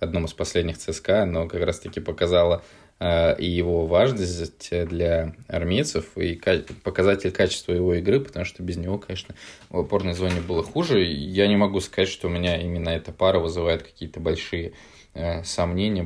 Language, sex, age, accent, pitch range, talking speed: Russian, male, 20-39, native, 85-95 Hz, 170 wpm